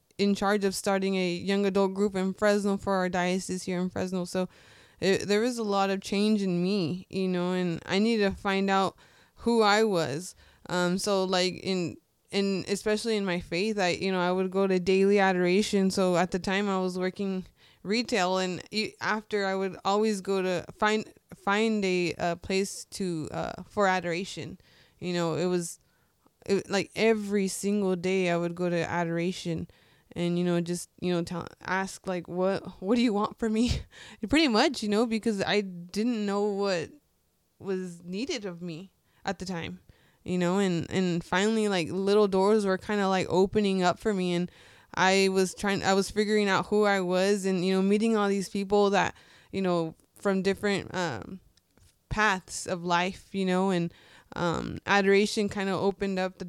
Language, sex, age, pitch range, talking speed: English, female, 20-39, 180-200 Hz, 190 wpm